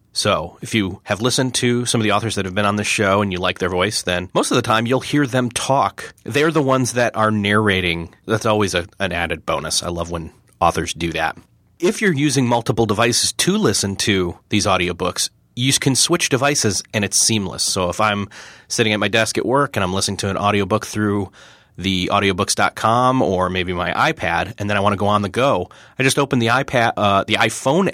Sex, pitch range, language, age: male, 100-125 Hz, English, 30-49